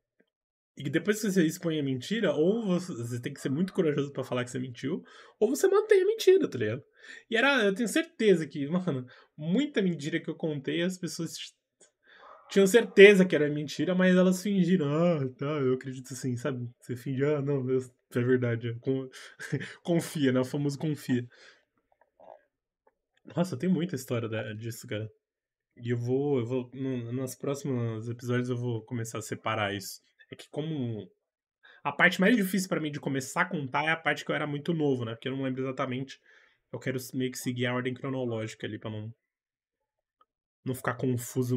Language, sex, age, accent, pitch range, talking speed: Portuguese, male, 20-39, Brazilian, 125-170 Hz, 190 wpm